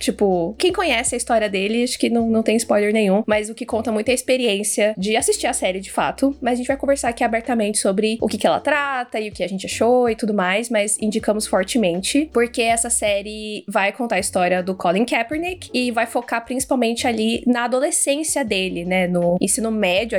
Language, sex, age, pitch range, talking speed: Portuguese, female, 20-39, 195-240 Hz, 220 wpm